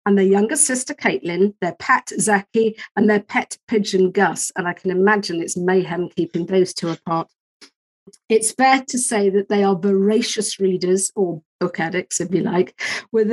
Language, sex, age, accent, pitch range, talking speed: English, female, 50-69, British, 190-230 Hz, 175 wpm